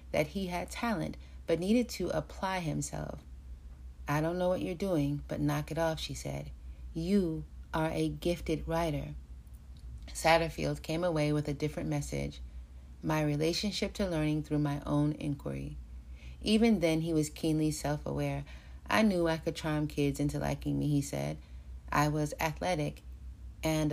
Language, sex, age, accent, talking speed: English, female, 30-49, American, 155 wpm